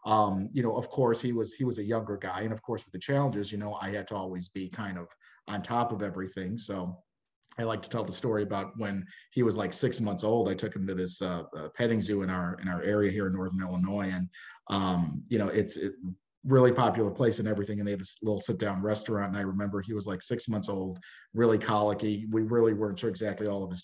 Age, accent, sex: 40-59, American, male